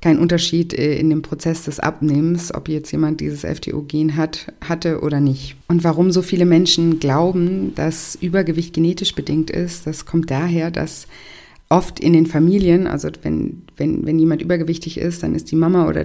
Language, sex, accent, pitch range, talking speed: German, female, German, 150-165 Hz, 180 wpm